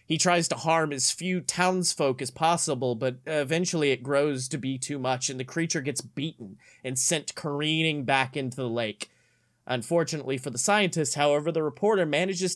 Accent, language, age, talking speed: American, English, 30-49, 175 wpm